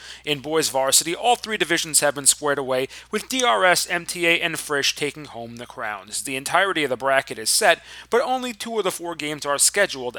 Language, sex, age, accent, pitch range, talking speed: English, male, 30-49, American, 135-175 Hz, 205 wpm